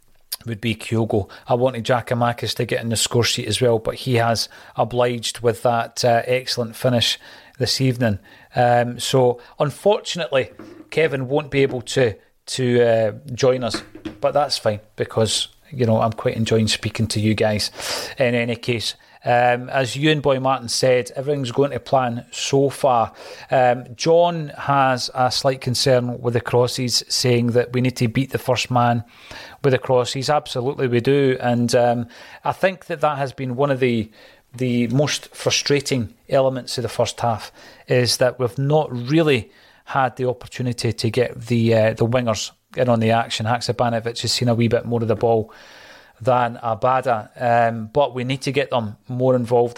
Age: 30-49